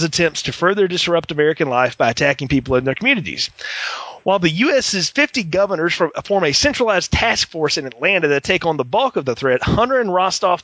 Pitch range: 155-210 Hz